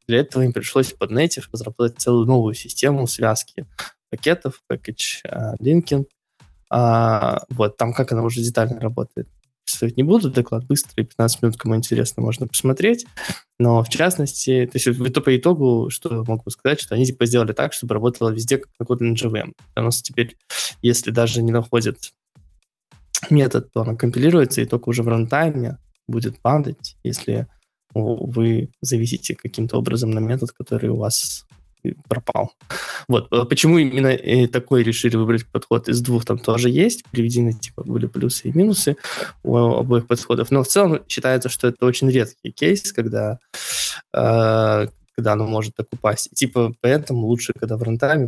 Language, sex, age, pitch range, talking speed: Russian, male, 20-39, 115-130 Hz, 155 wpm